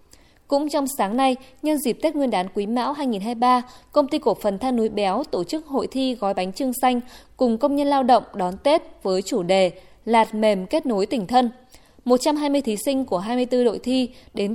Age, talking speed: 20-39, 210 wpm